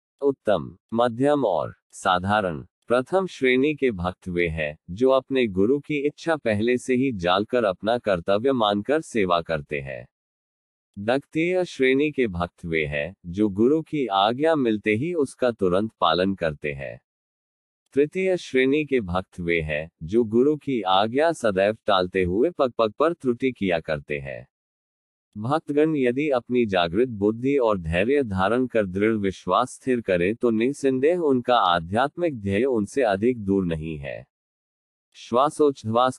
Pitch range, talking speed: 95-130 Hz, 145 wpm